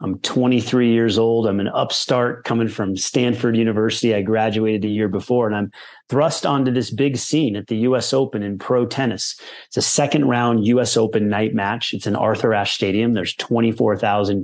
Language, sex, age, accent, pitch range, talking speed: English, male, 30-49, American, 100-115 Hz, 185 wpm